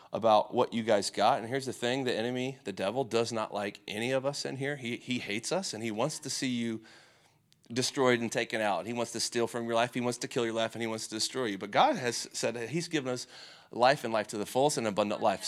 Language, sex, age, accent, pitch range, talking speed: English, male, 30-49, American, 120-160 Hz, 275 wpm